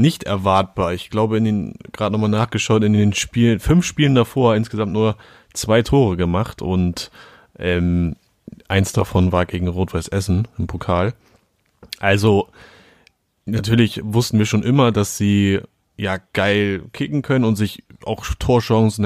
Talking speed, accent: 145 wpm, German